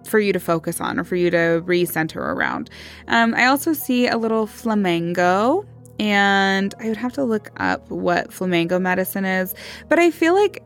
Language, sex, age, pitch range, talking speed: English, female, 20-39, 175-240 Hz, 185 wpm